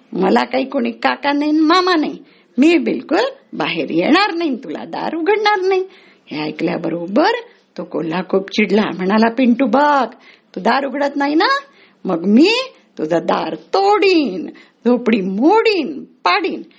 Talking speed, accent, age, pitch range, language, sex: 135 wpm, native, 60-79, 200-335 Hz, Marathi, female